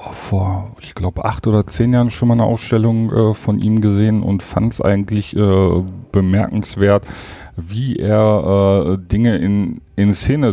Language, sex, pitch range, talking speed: German, male, 100-110 Hz, 155 wpm